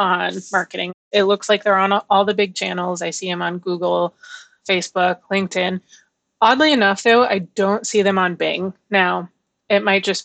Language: English